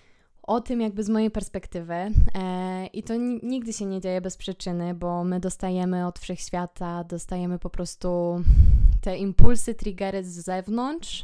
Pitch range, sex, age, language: 175-205 Hz, female, 20-39, Polish